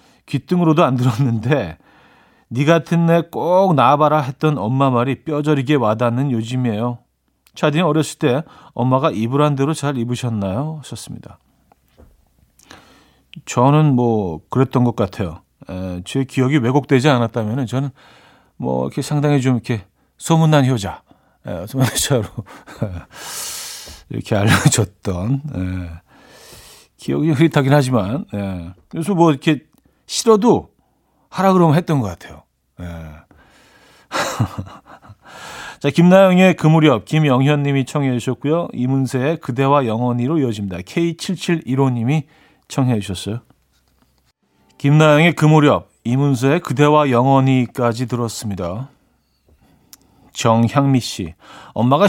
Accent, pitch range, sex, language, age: native, 115-155 Hz, male, Korean, 40-59